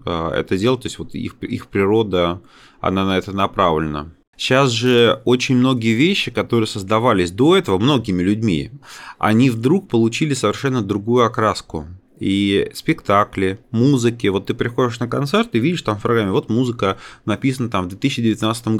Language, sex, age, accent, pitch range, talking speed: Russian, male, 30-49, native, 100-125 Hz, 155 wpm